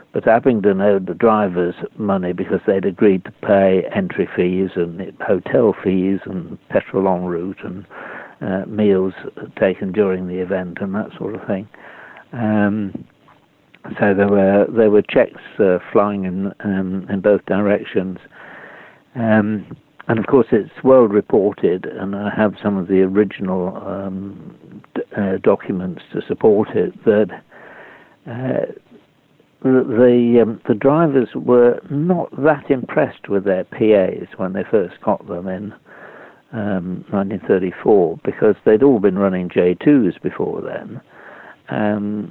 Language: English